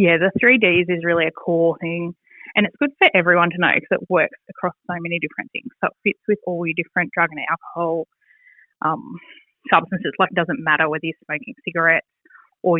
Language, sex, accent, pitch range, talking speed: English, female, Australian, 165-195 Hz, 205 wpm